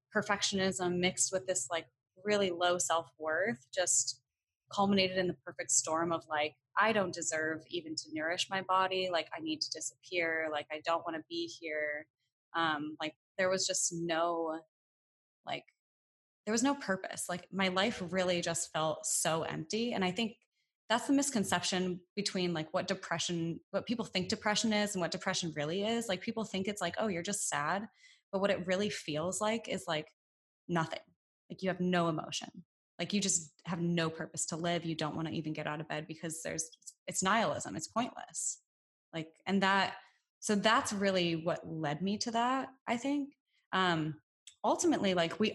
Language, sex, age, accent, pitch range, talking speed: English, female, 20-39, American, 160-200 Hz, 180 wpm